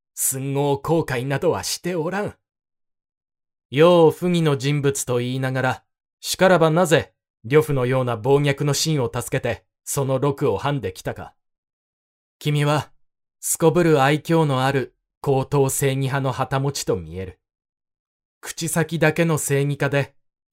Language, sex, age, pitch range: Japanese, male, 20-39, 130-160 Hz